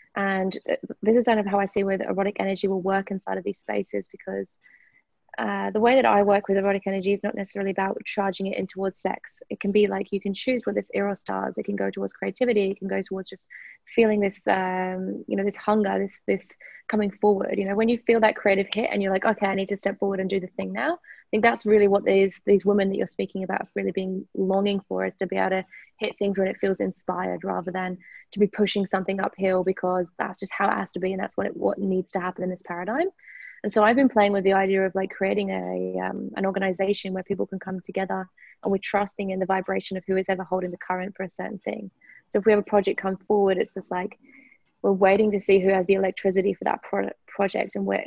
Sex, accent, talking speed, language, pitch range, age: female, British, 255 wpm, English, 190-205 Hz, 20-39